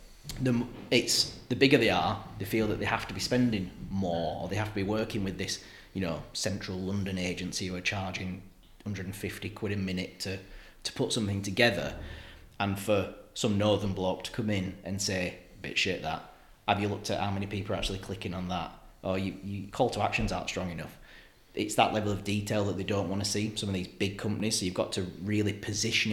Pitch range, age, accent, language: 95-110 Hz, 30-49, British, English